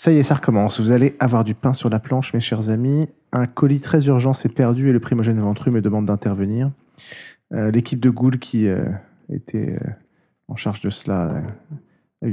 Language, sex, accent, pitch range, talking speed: French, male, French, 105-130 Hz, 200 wpm